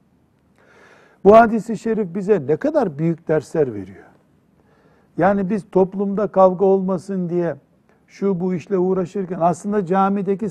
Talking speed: 120 wpm